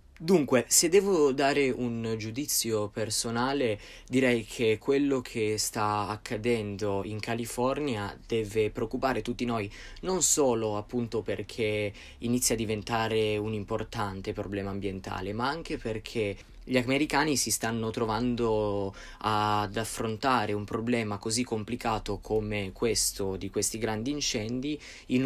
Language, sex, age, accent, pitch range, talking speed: Italian, male, 20-39, native, 100-120 Hz, 120 wpm